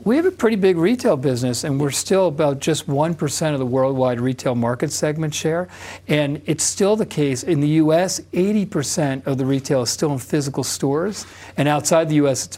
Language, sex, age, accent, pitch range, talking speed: English, male, 50-69, American, 130-160 Hz, 200 wpm